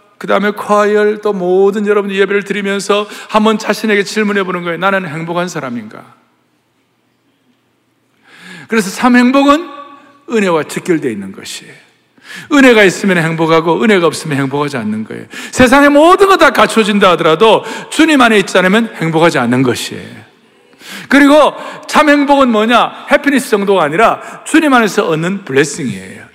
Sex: male